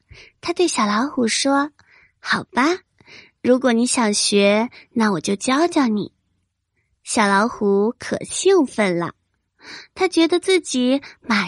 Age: 20-39